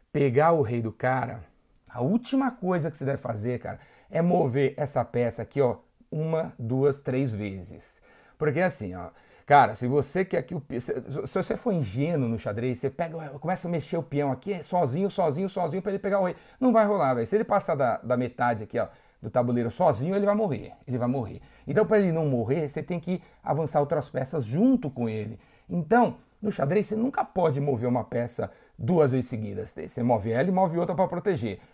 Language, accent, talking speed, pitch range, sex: Portuguese, Brazilian, 210 wpm, 125-175 Hz, male